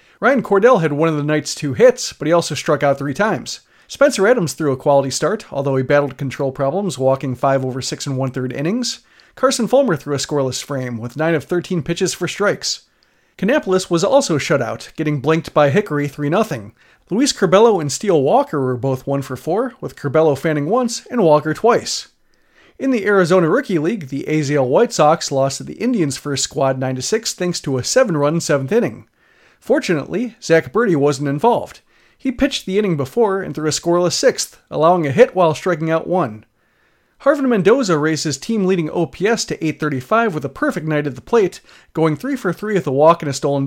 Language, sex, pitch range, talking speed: English, male, 145-210 Hz, 195 wpm